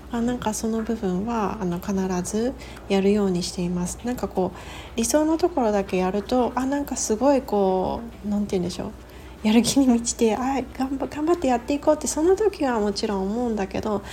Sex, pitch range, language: female, 185-250 Hz, Japanese